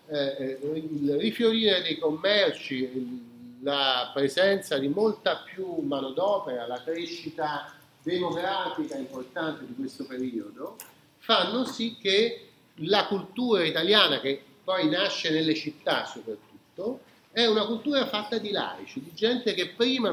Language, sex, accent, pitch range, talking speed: Italian, male, native, 140-210 Hz, 120 wpm